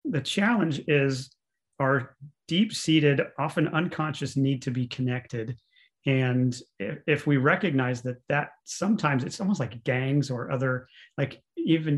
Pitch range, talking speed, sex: 130-160 Hz, 135 wpm, male